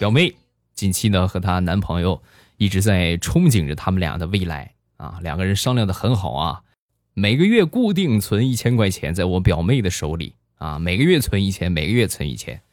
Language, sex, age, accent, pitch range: Chinese, male, 20-39, native, 90-130 Hz